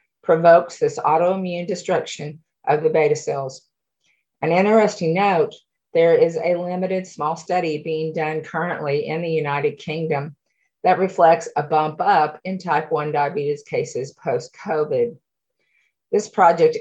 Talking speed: 135 wpm